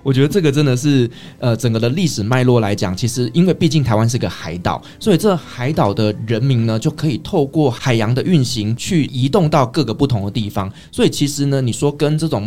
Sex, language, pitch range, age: male, Chinese, 110-145 Hz, 20-39